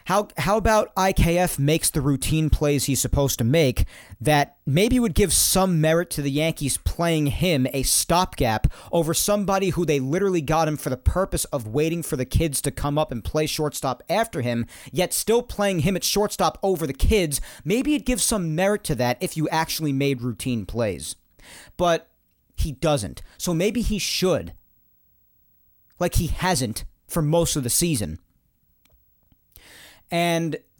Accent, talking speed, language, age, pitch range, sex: American, 170 wpm, English, 40-59, 125-175 Hz, male